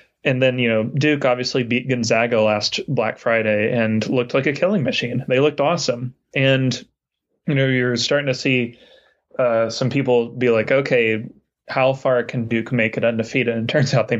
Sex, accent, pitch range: male, American, 115-135 Hz